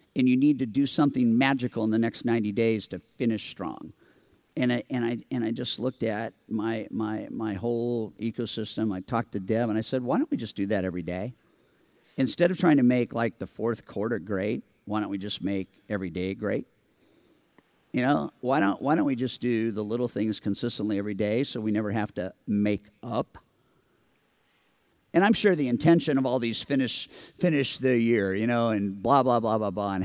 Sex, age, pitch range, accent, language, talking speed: male, 50-69, 105-125 Hz, American, English, 210 wpm